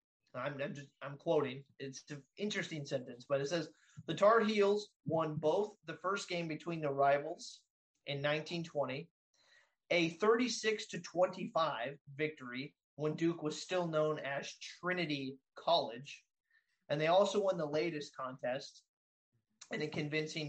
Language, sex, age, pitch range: English, male, 30-49, 140-180 Hz